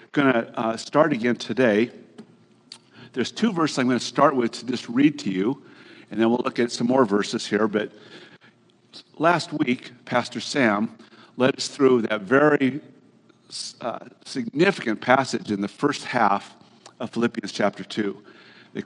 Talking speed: 160 wpm